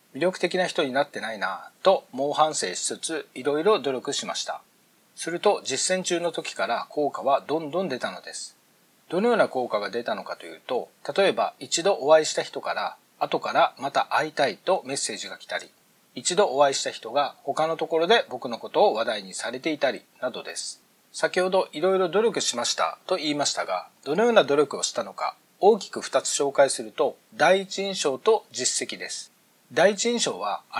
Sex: male